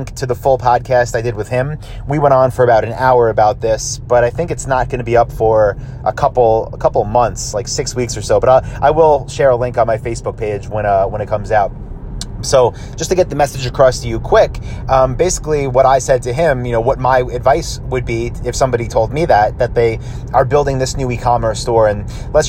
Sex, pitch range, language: male, 120-150 Hz, English